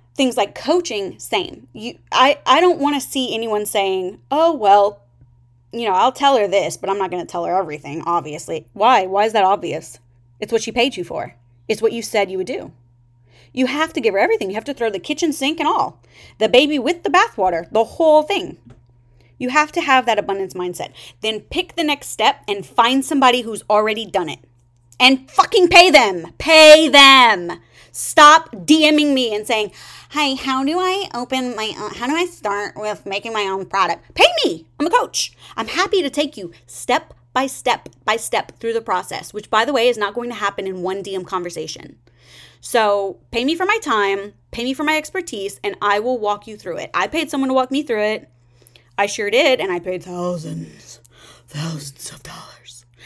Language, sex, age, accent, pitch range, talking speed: English, female, 30-49, American, 175-280 Hz, 210 wpm